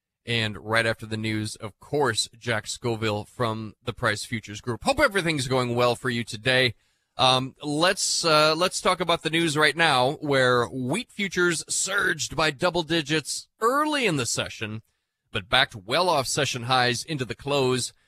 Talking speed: 170 wpm